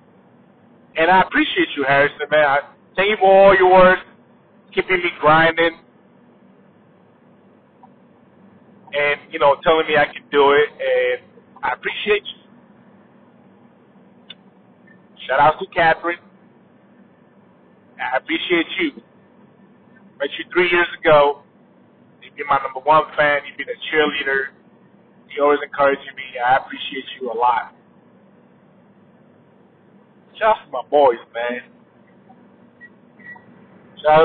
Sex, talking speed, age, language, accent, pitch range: male, 115 wpm, 30-49, English, American, 155-220 Hz